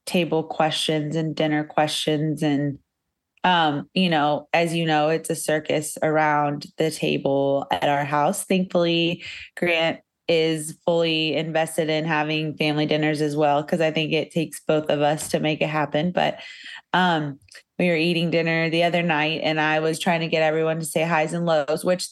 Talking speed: 180 wpm